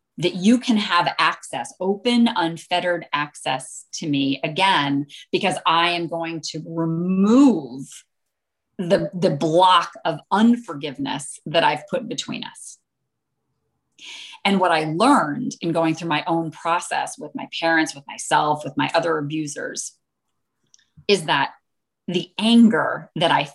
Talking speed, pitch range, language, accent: 135 wpm, 155-200 Hz, English, American